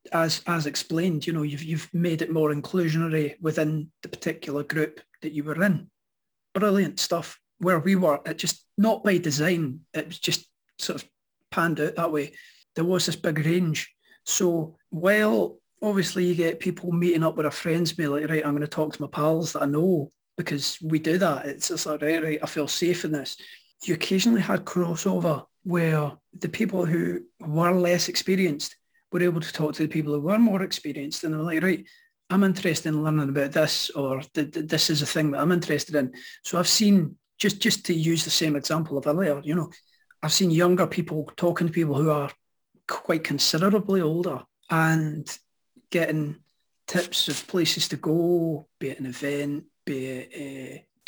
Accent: British